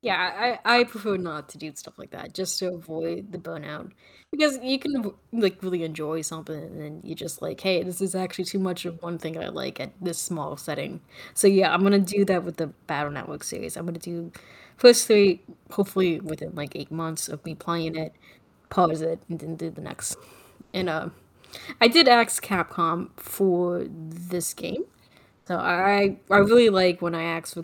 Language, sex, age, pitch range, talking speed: English, female, 20-39, 165-200 Hz, 200 wpm